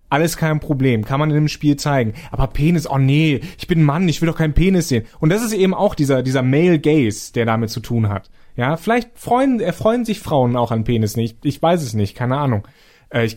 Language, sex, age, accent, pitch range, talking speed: German, male, 30-49, German, 125-160 Hz, 240 wpm